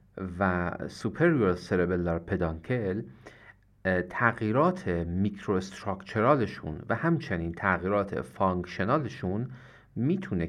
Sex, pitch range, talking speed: male, 90-115 Hz, 70 wpm